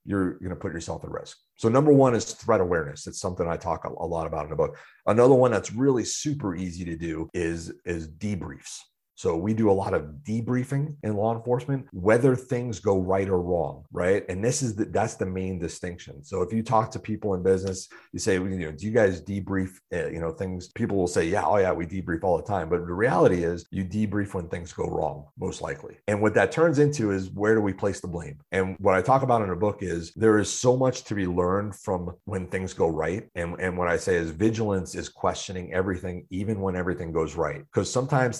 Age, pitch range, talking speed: 30-49, 90-115 Hz, 240 wpm